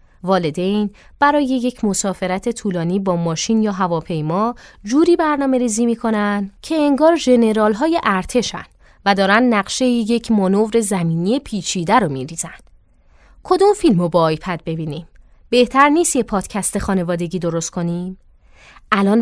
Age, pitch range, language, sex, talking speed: 20-39, 180-245 Hz, Persian, female, 130 wpm